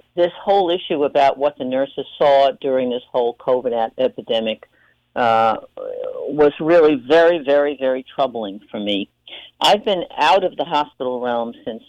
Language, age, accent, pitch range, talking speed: English, 50-69, American, 115-180 Hz, 150 wpm